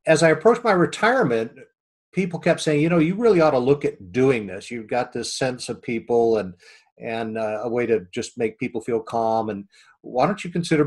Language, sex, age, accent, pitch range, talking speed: English, male, 50-69, American, 115-140 Hz, 220 wpm